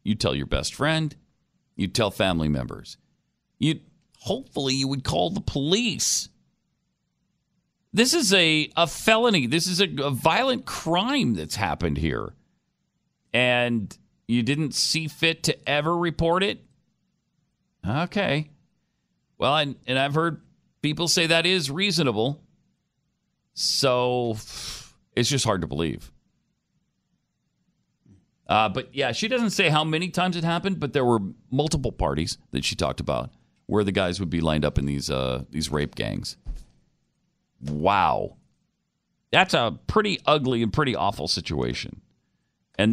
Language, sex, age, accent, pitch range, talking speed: English, male, 40-59, American, 105-170 Hz, 140 wpm